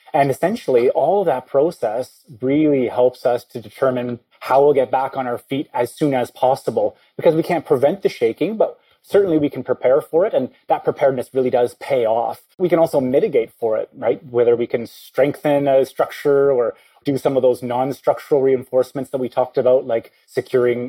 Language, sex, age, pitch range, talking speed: English, male, 30-49, 125-160 Hz, 195 wpm